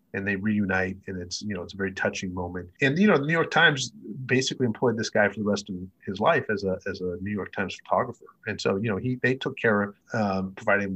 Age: 30-49